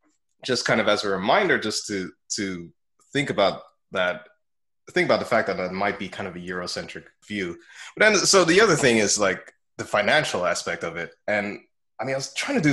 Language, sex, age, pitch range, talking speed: English, male, 20-39, 95-125 Hz, 215 wpm